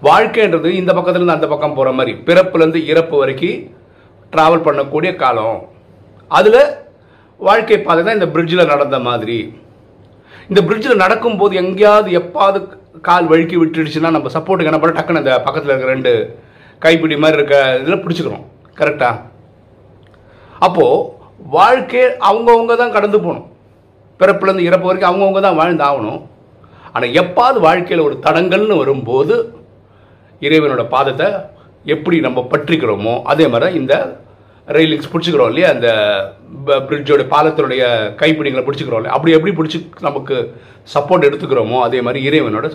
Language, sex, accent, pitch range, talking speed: Tamil, male, native, 140-185 Hz, 120 wpm